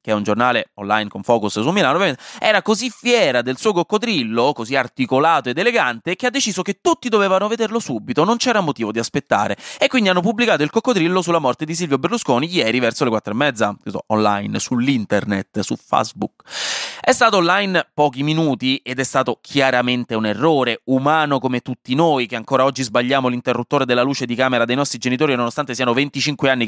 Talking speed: 190 wpm